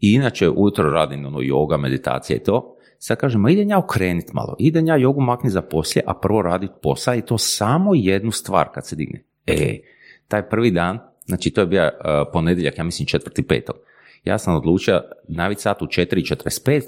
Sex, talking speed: male, 180 wpm